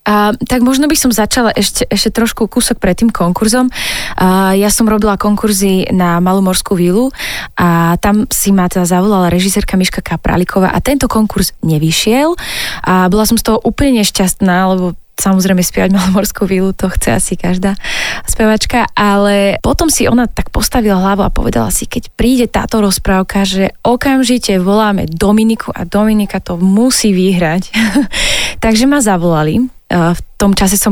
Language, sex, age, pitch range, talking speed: Slovak, female, 20-39, 190-230 Hz, 155 wpm